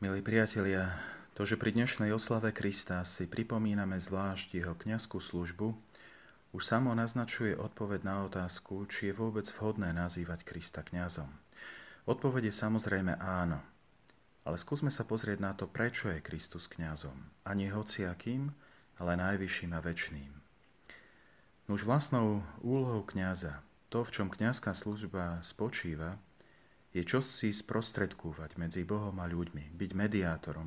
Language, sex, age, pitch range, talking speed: Slovak, male, 40-59, 85-110 Hz, 135 wpm